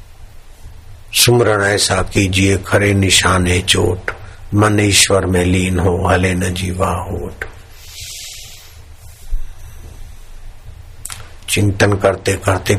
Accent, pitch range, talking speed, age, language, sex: native, 90-100 Hz, 90 wpm, 50-69, Hindi, male